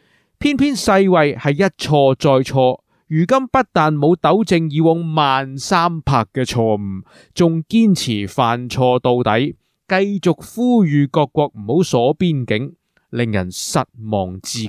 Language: Chinese